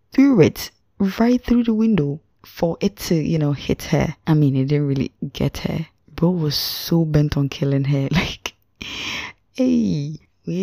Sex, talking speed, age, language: female, 170 wpm, 20-39, English